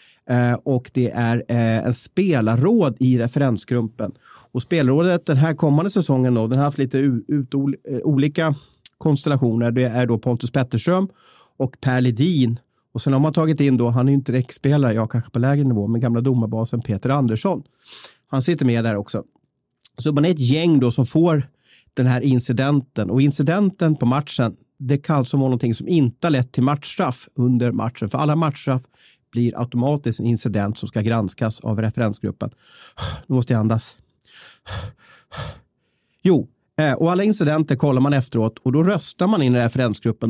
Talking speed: 170 wpm